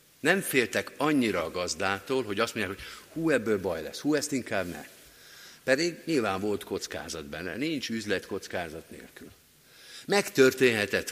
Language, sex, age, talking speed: Hungarian, male, 50-69, 145 wpm